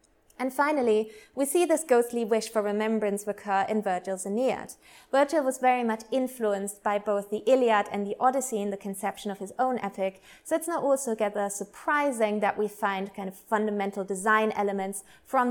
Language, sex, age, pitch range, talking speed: English, female, 20-39, 200-255 Hz, 180 wpm